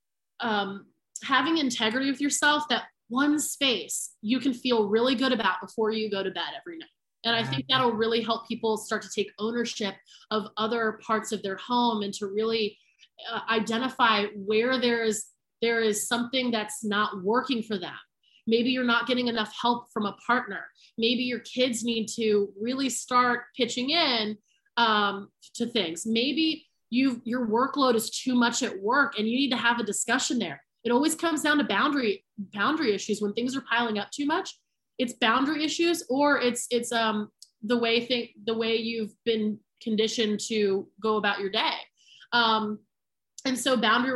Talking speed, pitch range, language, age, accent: 175 wpm, 215-255 Hz, English, 30-49, American